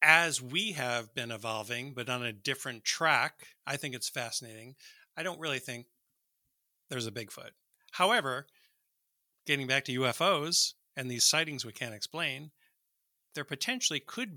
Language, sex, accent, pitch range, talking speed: English, male, American, 120-155 Hz, 145 wpm